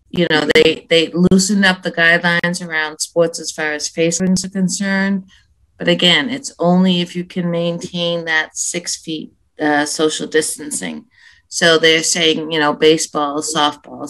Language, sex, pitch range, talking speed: English, female, 160-190 Hz, 160 wpm